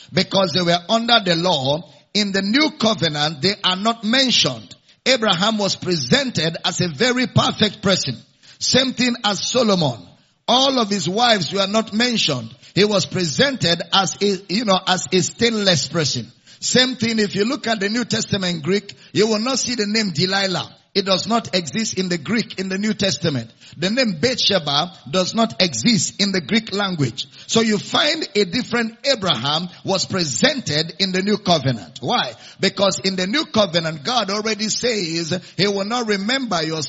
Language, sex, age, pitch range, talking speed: English, male, 50-69, 170-225 Hz, 175 wpm